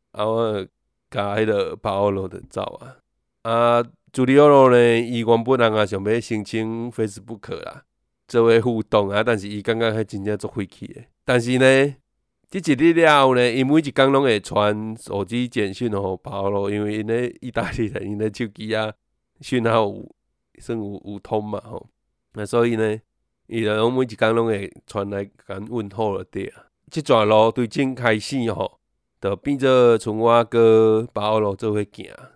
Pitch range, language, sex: 105-125 Hz, Chinese, male